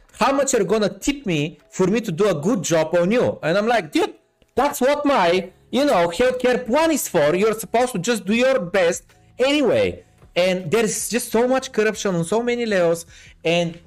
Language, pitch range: Bulgarian, 160-220 Hz